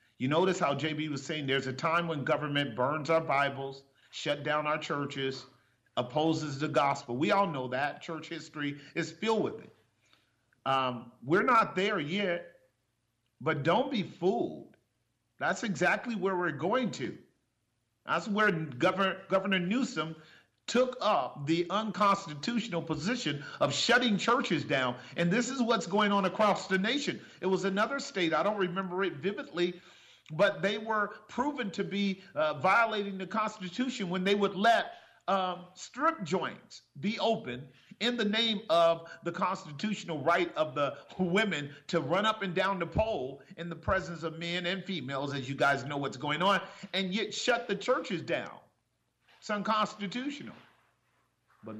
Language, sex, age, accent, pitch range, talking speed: English, male, 40-59, American, 145-200 Hz, 160 wpm